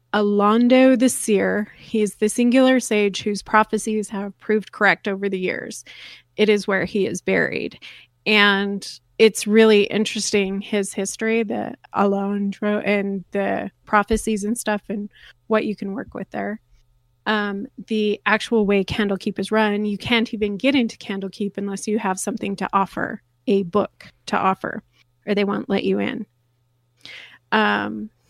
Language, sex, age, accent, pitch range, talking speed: English, female, 30-49, American, 190-215 Hz, 150 wpm